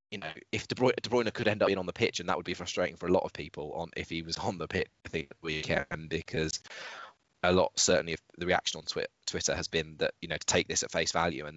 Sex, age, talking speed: male, 20-39, 290 wpm